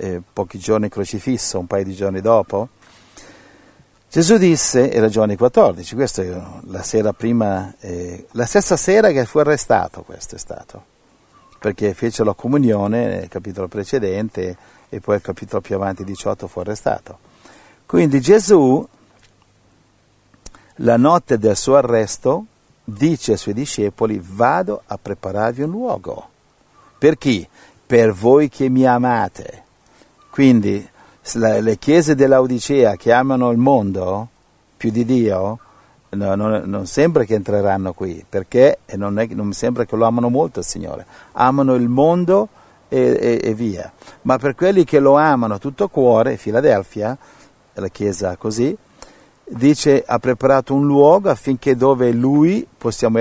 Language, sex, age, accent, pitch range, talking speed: Italian, male, 50-69, native, 100-135 Hz, 135 wpm